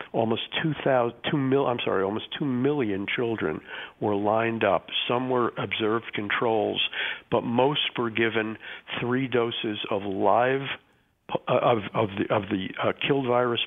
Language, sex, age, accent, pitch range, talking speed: English, male, 50-69, American, 105-125 Hz, 150 wpm